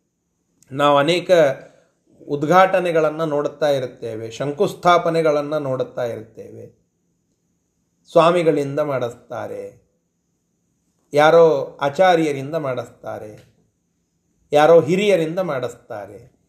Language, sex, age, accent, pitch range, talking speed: Kannada, male, 30-49, native, 150-205 Hz, 60 wpm